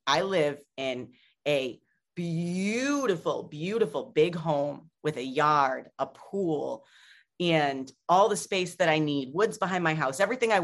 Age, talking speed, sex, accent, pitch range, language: 30-49, 145 wpm, female, American, 150-195 Hz, English